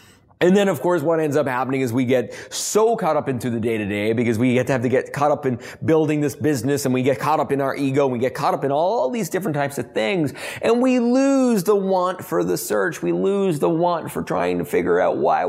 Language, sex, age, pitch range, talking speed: English, male, 30-49, 105-155 Hz, 265 wpm